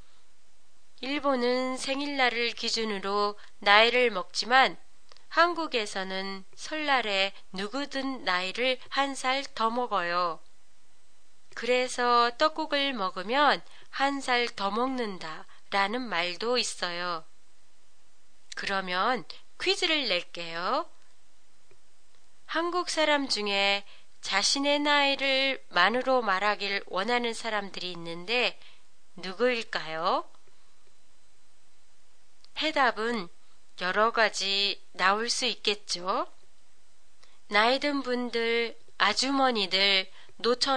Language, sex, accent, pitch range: Japanese, female, Korean, 195-260 Hz